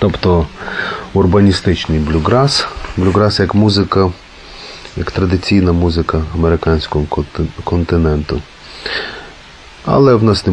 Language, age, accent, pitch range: Ukrainian, 30-49, native, 80-95 Hz